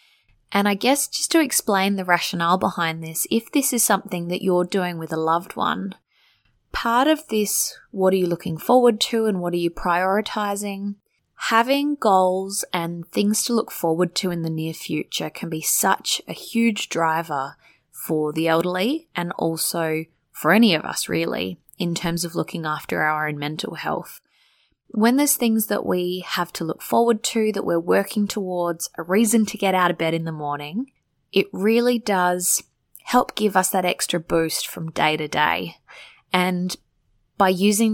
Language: English